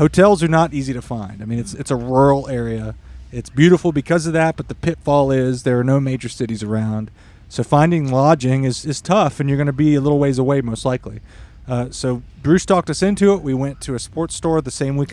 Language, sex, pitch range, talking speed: English, male, 120-150 Hz, 240 wpm